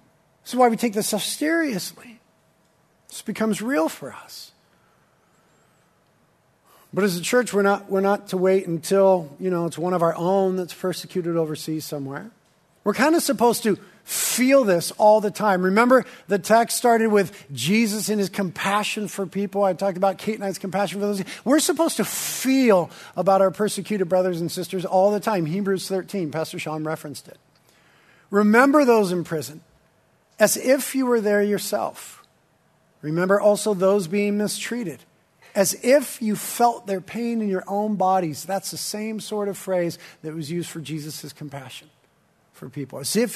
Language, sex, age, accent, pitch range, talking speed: English, male, 50-69, American, 175-210 Hz, 175 wpm